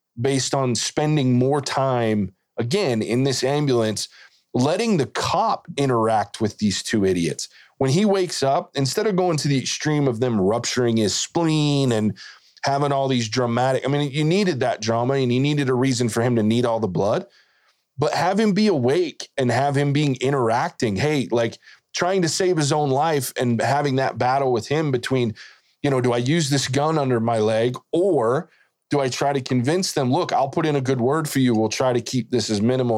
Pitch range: 120-145 Hz